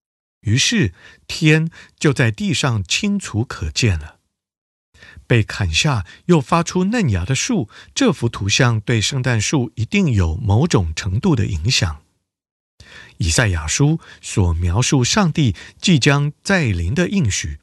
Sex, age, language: male, 50-69, Chinese